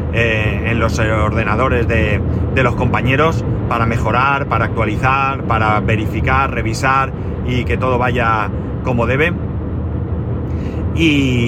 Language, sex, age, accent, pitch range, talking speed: Spanish, male, 30-49, Spanish, 95-125 Hz, 115 wpm